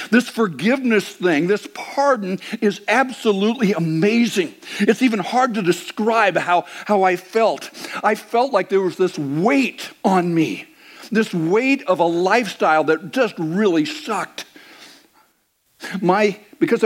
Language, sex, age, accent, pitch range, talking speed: English, male, 60-79, American, 155-225 Hz, 130 wpm